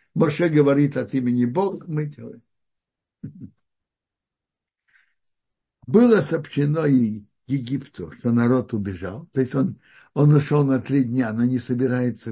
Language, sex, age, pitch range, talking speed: Russian, male, 60-79, 115-155 Hz, 120 wpm